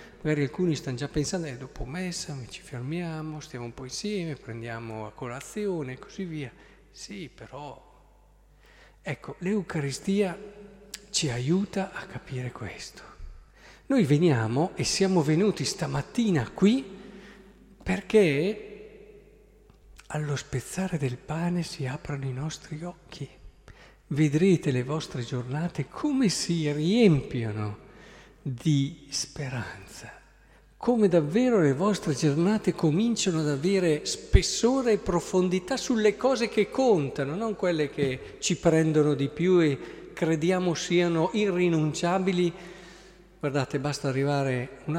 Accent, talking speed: native, 115 wpm